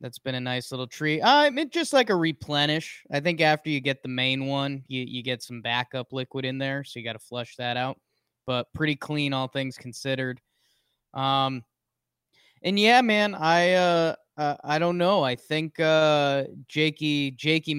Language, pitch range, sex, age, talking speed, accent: English, 125-150 Hz, male, 20-39, 190 wpm, American